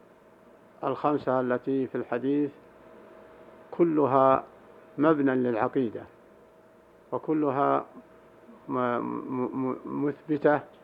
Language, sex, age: Arabic, male, 50-69